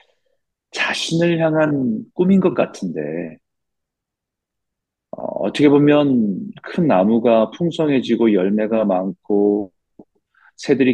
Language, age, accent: Korean, 40-59, native